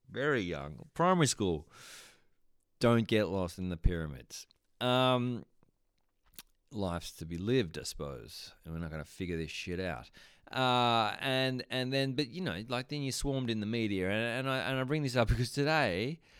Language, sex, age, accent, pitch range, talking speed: English, male, 30-49, Australian, 85-125 Hz, 185 wpm